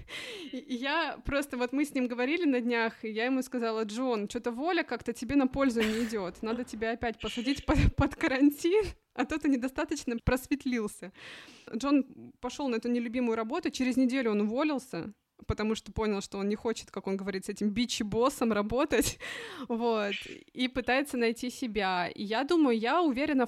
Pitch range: 210-255 Hz